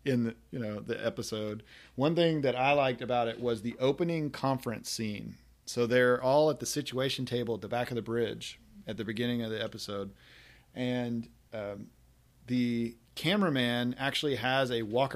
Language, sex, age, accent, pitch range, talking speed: English, male, 40-59, American, 115-130 Hz, 170 wpm